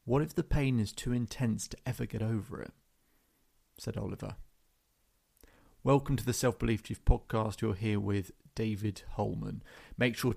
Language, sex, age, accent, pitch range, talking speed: English, male, 30-49, British, 100-125 Hz, 155 wpm